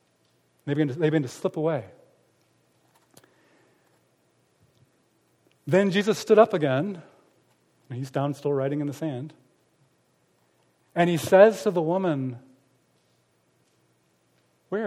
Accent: American